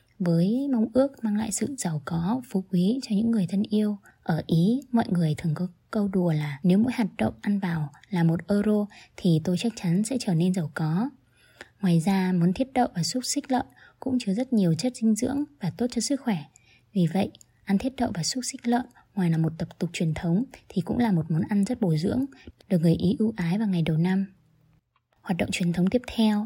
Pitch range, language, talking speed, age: 165-220 Hz, Vietnamese, 235 wpm, 20-39